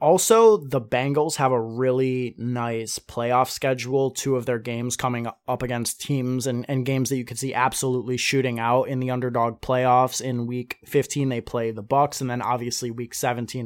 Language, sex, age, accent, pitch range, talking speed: English, male, 20-39, American, 120-135 Hz, 190 wpm